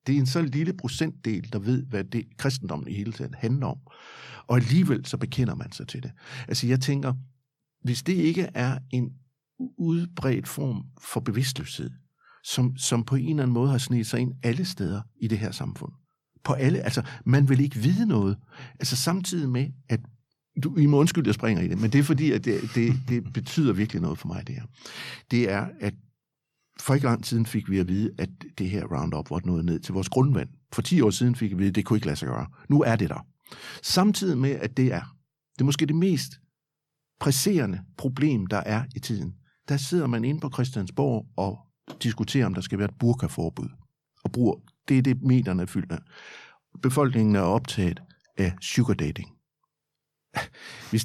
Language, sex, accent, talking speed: Danish, male, native, 205 wpm